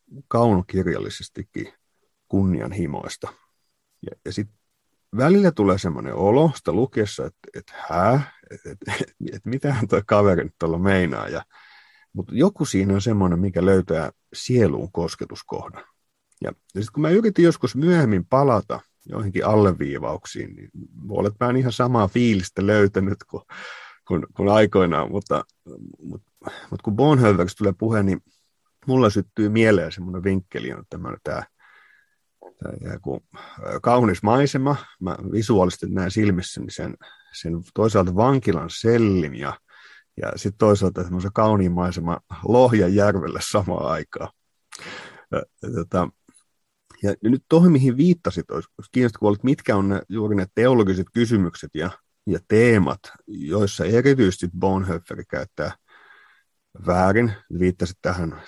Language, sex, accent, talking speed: Finnish, male, native, 125 wpm